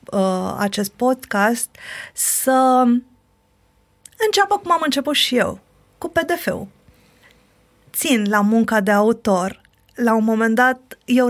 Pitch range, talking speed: 215-275 Hz, 110 wpm